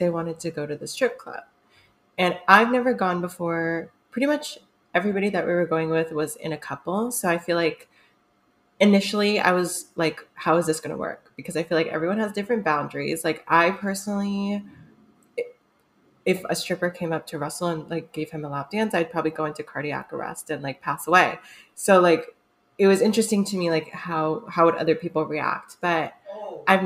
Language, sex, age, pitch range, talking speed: English, female, 20-39, 160-195 Hz, 200 wpm